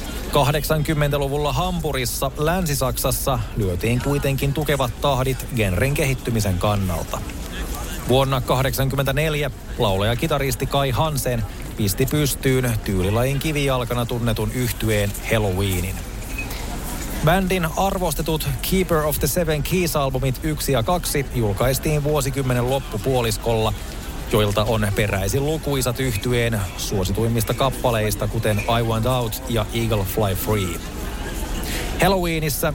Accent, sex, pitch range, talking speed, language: native, male, 110-140 Hz, 95 wpm, Finnish